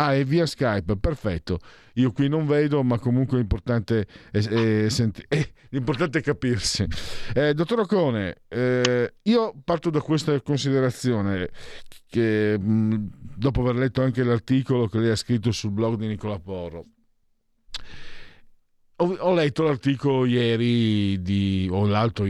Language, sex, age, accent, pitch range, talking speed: Italian, male, 50-69, native, 110-140 Hz, 135 wpm